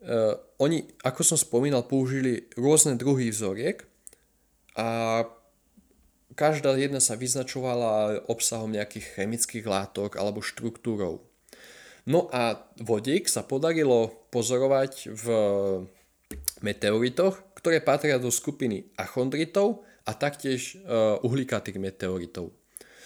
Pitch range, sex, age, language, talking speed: 105-130 Hz, male, 20-39, Slovak, 95 wpm